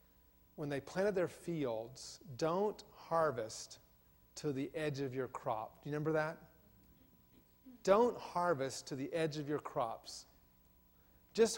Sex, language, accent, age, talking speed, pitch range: male, English, American, 40-59, 135 wpm, 140-200 Hz